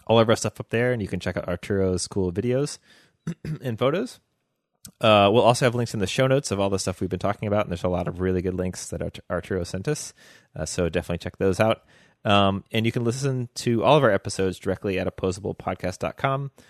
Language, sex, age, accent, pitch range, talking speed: English, male, 30-49, American, 90-115 Hz, 230 wpm